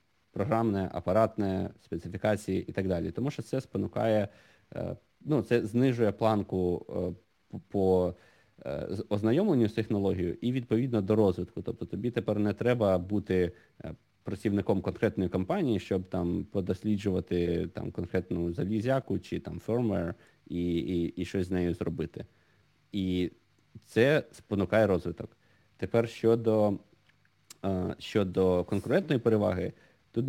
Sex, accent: male, native